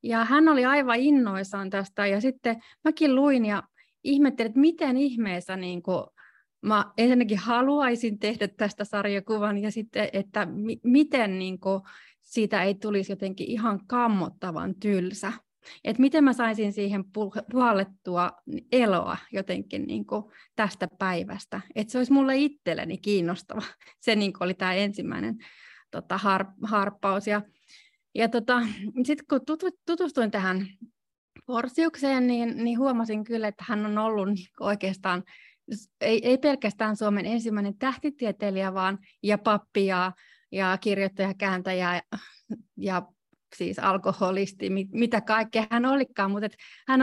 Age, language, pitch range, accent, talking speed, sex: 30-49, Finnish, 195-245 Hz, native, 130 wpm, female